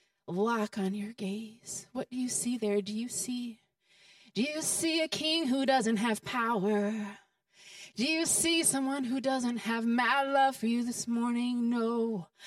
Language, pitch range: English, 205-285 Hz